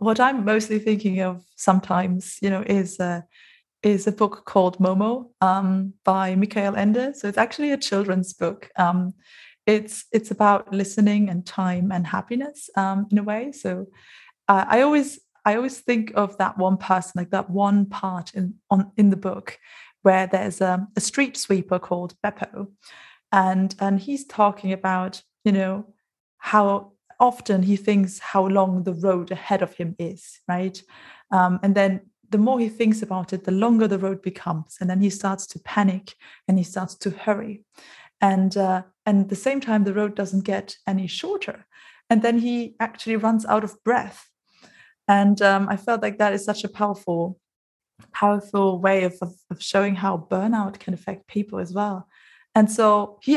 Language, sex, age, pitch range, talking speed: English, female, 20-39, 190-215 Hz, 180 wpm